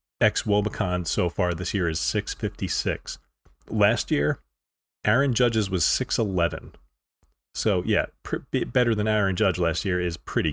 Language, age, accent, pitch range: English, 30-49, American, 90-110 Hz